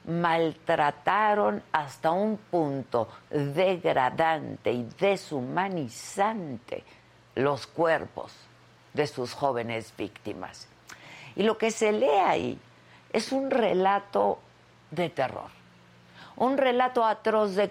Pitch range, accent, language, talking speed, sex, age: 140-220 Hz, Mexican, Spanish, 95 wpm, female, 50-69